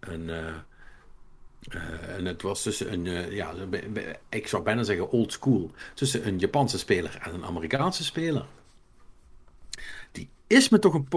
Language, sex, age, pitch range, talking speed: Dutch, male, 50-69, 90-135 Hz, 140 wpm